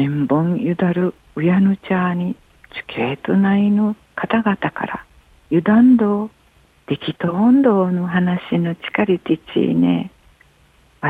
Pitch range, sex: 150-200 Hz, female